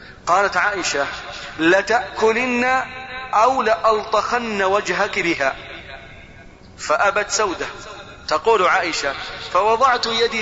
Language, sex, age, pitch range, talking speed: Arabic, male, 40-59, 150-215 Hz, 75 wpm